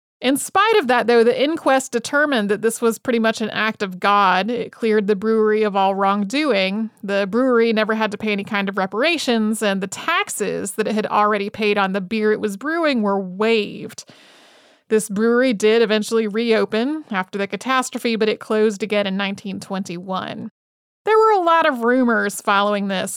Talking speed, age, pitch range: 185 wpm, 30-49, 210-245 Hz